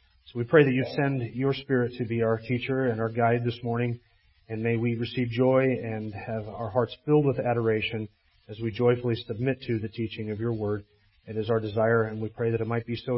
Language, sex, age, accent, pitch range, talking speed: English, male, 40-59, American, 115-135 Hz, 230 wpm